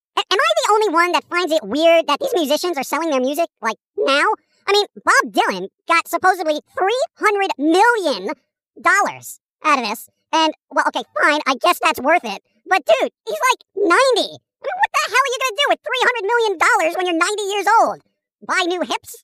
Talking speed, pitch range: 195 wpm, 310-420 Hz